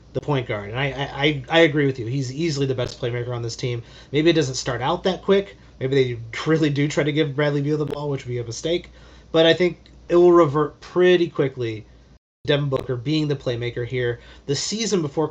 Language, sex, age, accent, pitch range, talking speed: English, male, 30-49, American, 120-165 Hz, 225 wpm